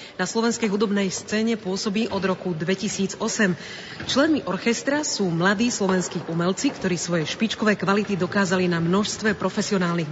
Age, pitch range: 40-59, 185-220 Hz